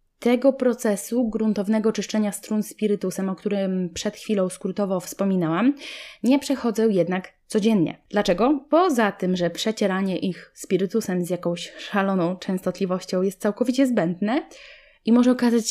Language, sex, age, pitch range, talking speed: Polish, female, 20-39, 180-235 Hz, 125 wpm